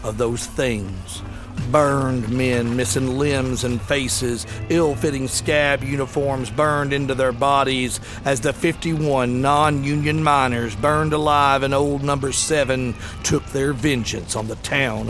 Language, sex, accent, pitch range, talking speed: English, male, American, 115-145 Hz, 130 wpm